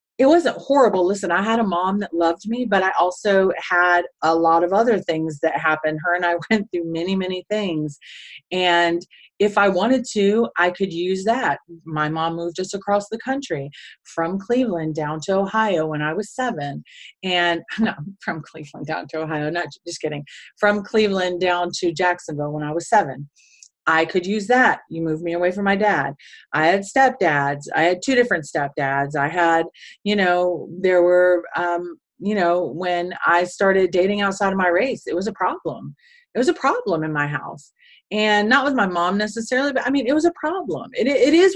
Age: 30-49